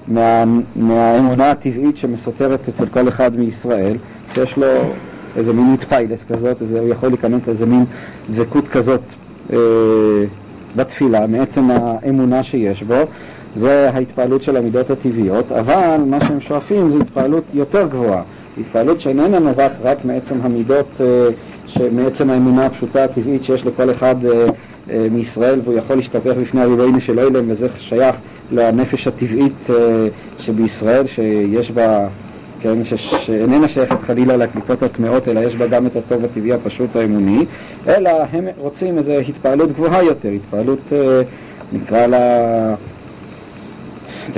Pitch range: 115-135 Hz